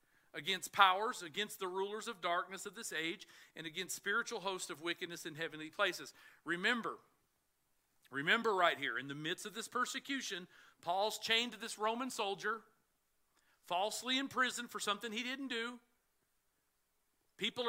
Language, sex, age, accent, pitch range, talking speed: English, male, 50-69, American, 200-260 Hz, 145 wpm